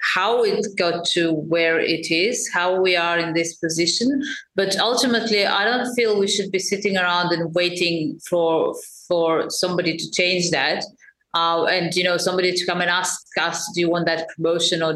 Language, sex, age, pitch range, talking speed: English, female, 30-49, 170-200 Hz, 190 wpm